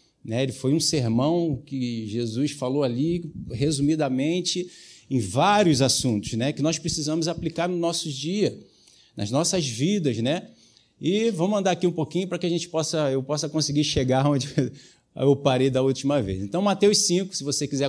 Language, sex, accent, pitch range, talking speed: Portuguese, male, Brazilian, 135-170 Hz, 175 wpm